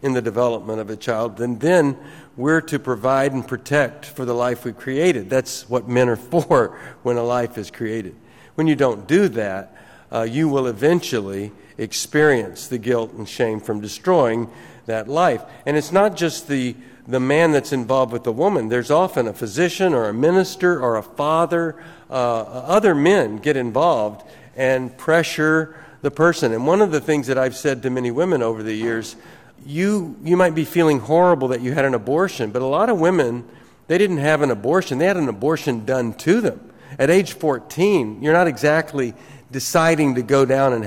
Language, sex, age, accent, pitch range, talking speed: English, male, 50-69, American, 120-160 Hz, 190 wpm